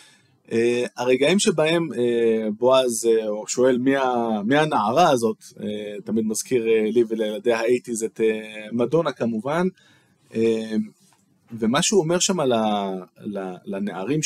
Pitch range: 115-160 Hz